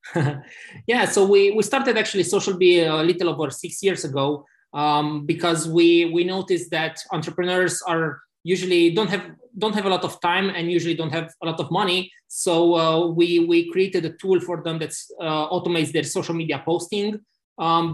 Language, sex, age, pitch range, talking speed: English, male, 20-39, 155-185 Hz, 185 wpm